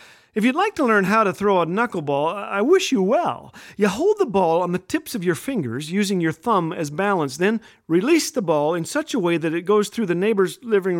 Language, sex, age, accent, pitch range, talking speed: English, male, 50-69, American, 170-230 Hz, 240 wpm